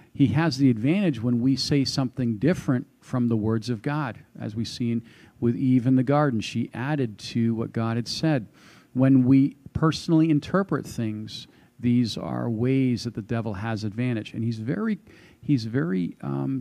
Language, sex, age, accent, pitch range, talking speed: English, male, 50-69, American, 115-140 Hz, 175 wpm